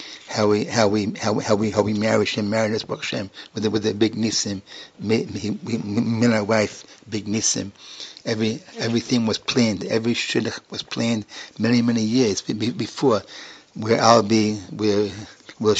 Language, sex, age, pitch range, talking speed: English, male, 60-79, 105-115 Hz, 150 wpm